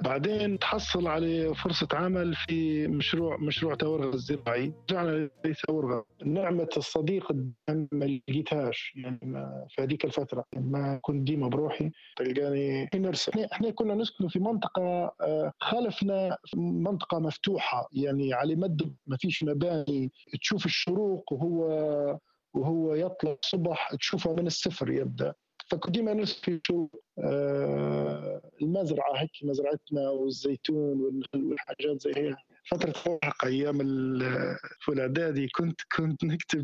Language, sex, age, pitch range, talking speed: Arabic, male, 50-69, 135-165 Hz, 110 wpm